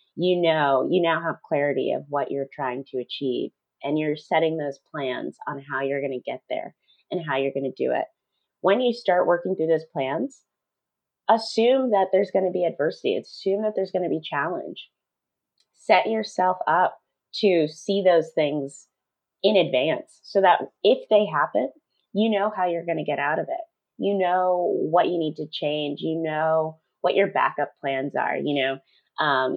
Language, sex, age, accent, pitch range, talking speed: English, female, 30-49, American, 140-190 Hz, 190 wpm